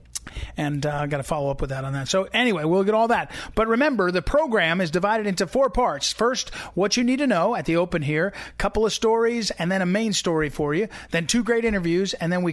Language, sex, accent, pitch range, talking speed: English, male, American, 160-210 Hz, 260 wpm